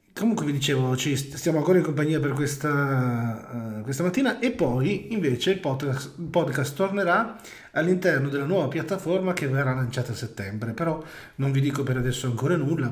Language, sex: Italian, male